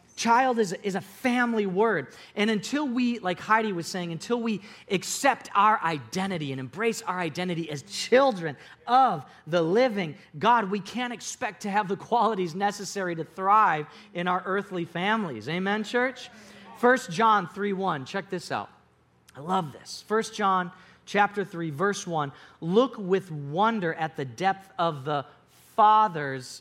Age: 40-59